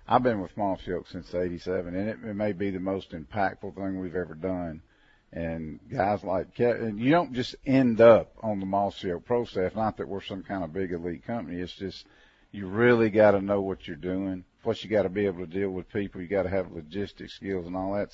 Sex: male